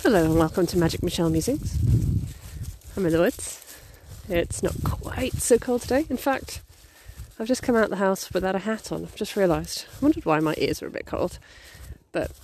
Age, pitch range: 30-49, 165-215 Hz